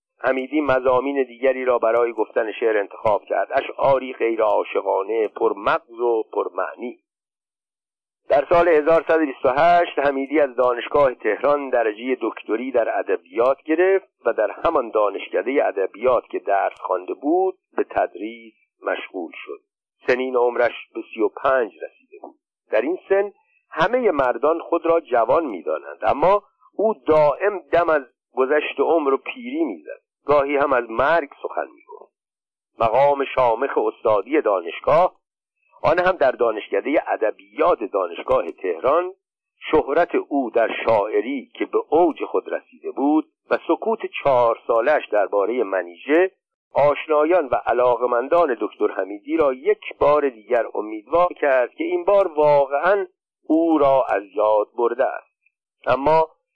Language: Persian